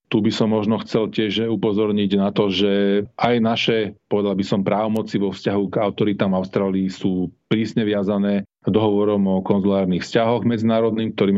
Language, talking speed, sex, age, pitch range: Slovak, 150 wpm, male, 40-59, 100-120 Hz